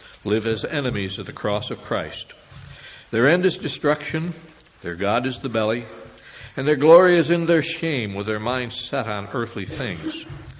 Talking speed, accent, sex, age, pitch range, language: 175 wpm, American, male, 60-79, 110-135 Hz, English